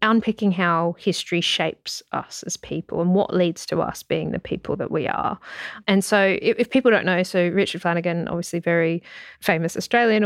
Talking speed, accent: 185 wpm, Australian